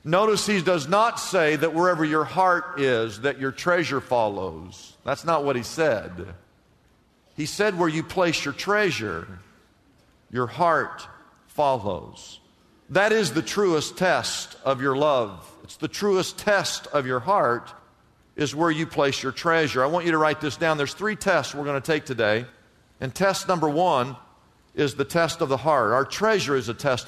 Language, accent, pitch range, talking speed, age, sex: English, American, 135-175 Hz, 175 wpm, 50-69, male